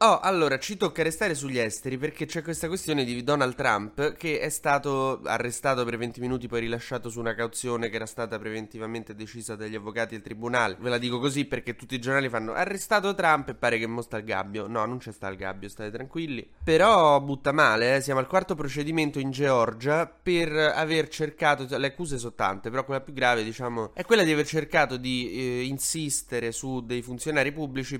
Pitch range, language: 115-140 Hz, Italian